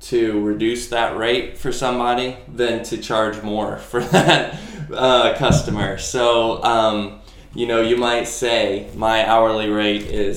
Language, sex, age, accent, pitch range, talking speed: English, male, 10-29, American, 100-120 Hz, 145 wpm